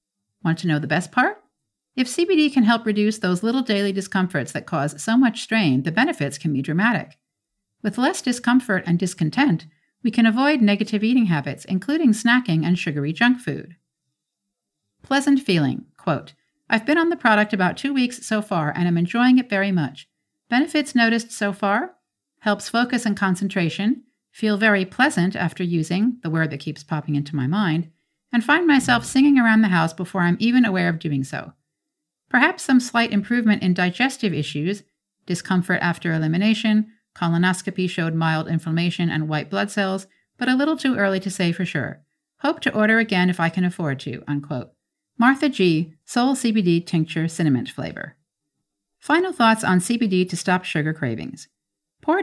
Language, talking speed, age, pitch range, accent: English, 170 wpm, 50-69, 160-235 Hz, American